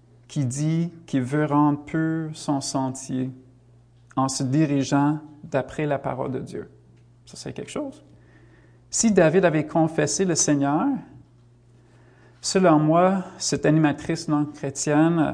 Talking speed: 120 wpm